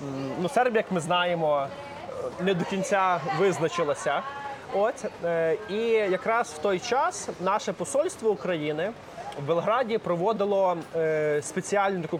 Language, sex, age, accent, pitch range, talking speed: Ukrainian, male, 20-39, native, 165-210 Hz, 110 wpm